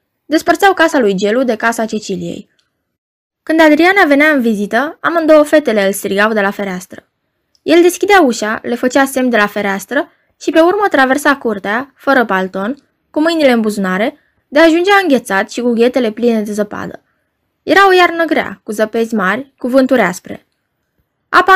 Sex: female